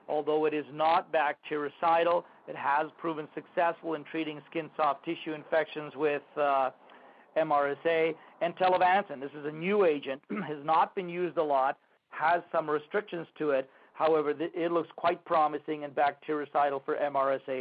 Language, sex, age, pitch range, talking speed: English, male, 50-69, 145-165 Hz, 155 wpm